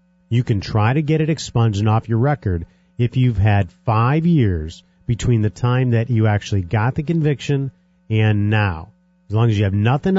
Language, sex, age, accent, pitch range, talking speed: English, male, 50-69, American, 110-180 Hz, 195 wpm